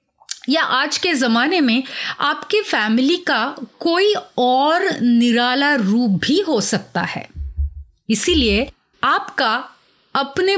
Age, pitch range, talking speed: 30-49, 215-310 Hz, 110 wpm